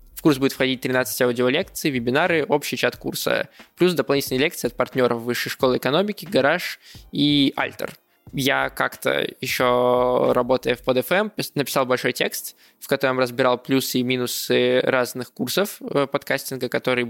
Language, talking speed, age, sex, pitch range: Russian, 135 wpm, 20-39, male, 125-140 Hz